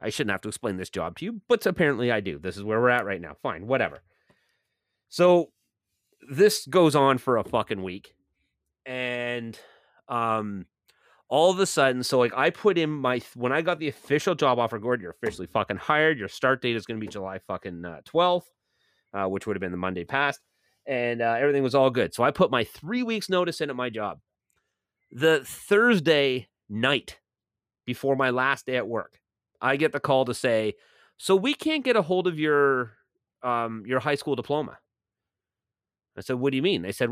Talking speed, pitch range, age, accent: 205 wpm, 105-140 Hz, 30-49, American